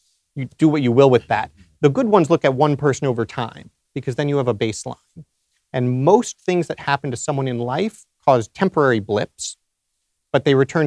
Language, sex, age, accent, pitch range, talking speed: English, male, 30-49, American, 115-150 Hz, 205 wpm